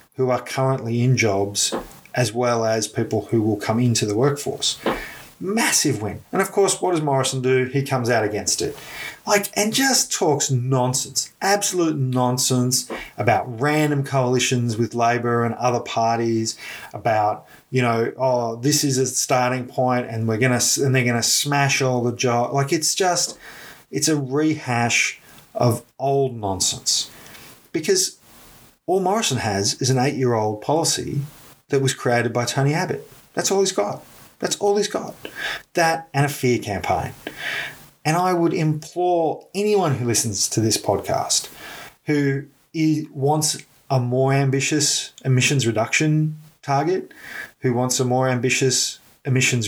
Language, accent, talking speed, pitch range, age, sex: English, Australian, 155 wpm, 120-150 Hz, 30-49, male